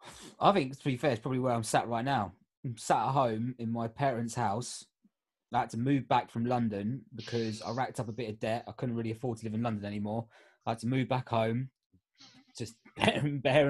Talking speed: 230 wpm